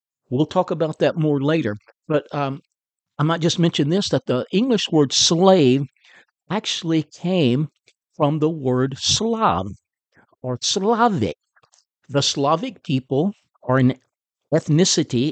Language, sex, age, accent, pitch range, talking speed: English, male, 60-79, American, 135-170 Hz, 125 wpm